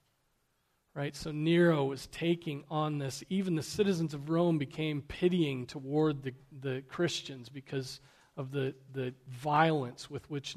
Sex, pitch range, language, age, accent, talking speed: male, 145-180 Hz, English, 40-59, American, 140 wpm